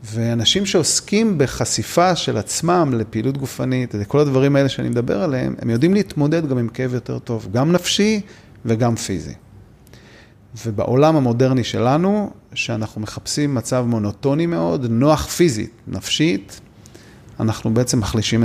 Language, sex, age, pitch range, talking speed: Hebrew, male, 30-49, 115-145 Hz, 125 wpm